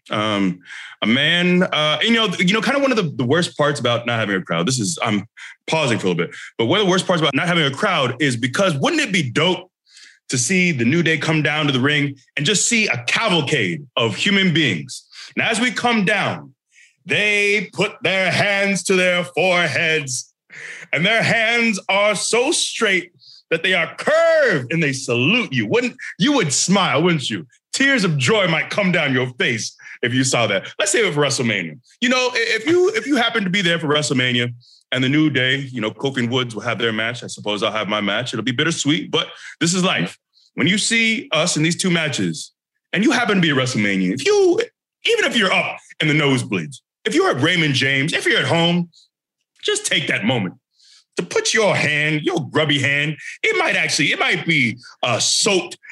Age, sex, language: 30-49, male, English